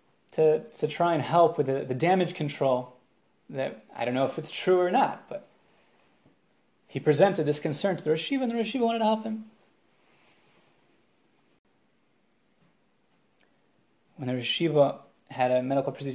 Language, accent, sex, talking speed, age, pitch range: English, American, male, 150 wpm, 30-49, 125-155 Hz